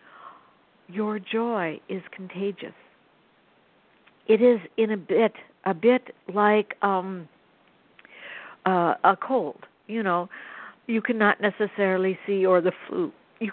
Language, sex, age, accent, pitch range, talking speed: English, female, 60-79, American, 180-225 Hz, 115 wpm